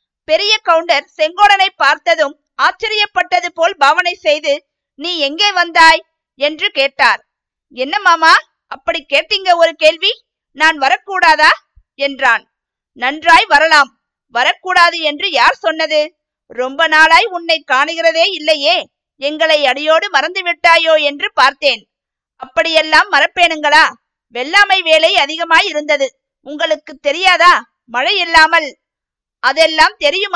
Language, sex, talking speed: Tamil, female, 100 wpm